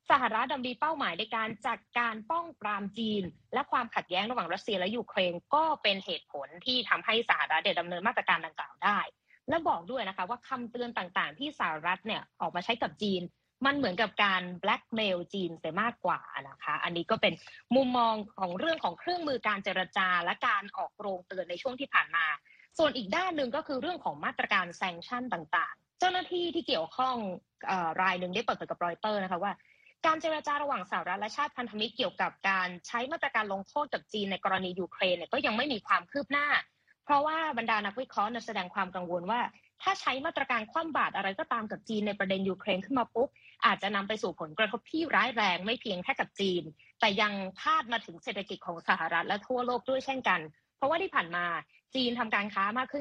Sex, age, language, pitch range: female, 20-39, Thai, 185-260 Hz